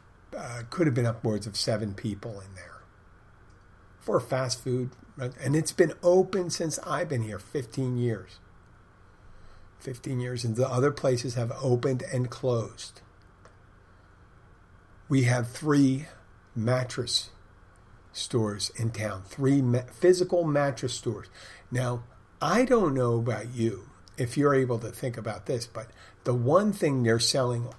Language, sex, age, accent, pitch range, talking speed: English, male, 50-69, American, 100-130 Hz, 135 wpm